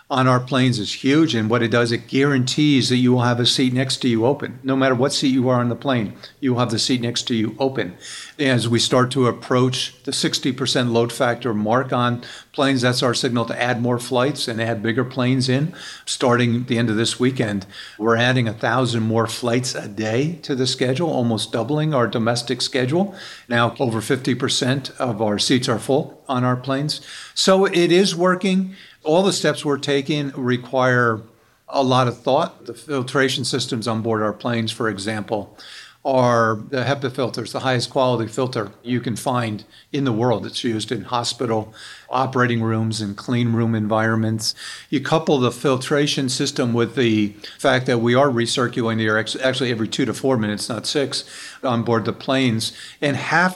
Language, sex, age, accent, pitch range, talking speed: English, male, 50-69, American, 115-135 Hz, 190 wpm